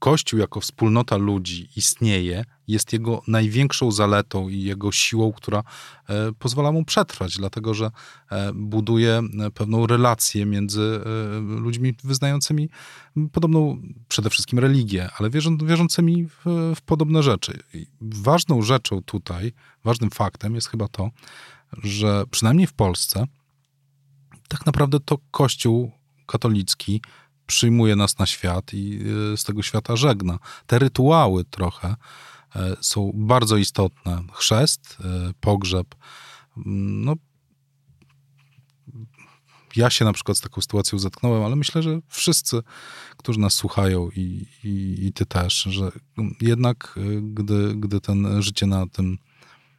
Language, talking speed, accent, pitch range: Polish, 115 wpm, native, 100-135 Hz